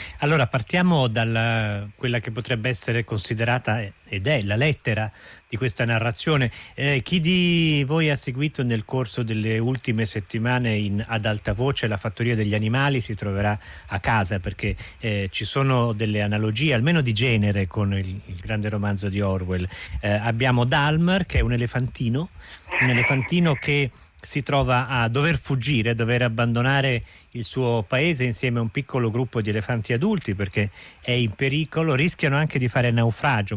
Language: Italian